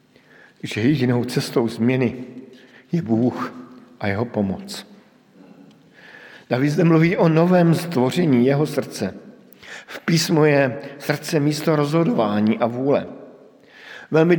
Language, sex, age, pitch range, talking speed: Slovak, male, 50-69, 115-145 Hz, 110 wpm